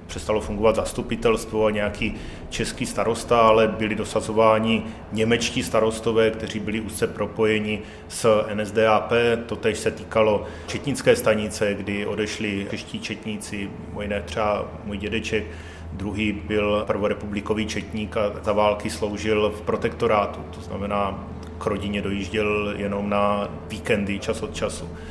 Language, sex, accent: Czech, male, native